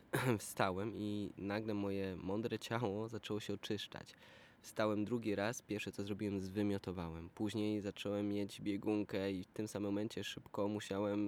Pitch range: 90-105 Hz